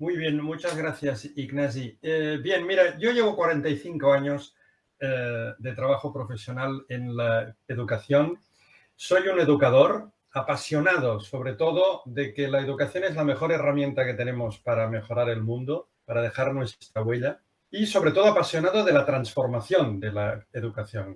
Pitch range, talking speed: 120-155 Hz, 150 wpm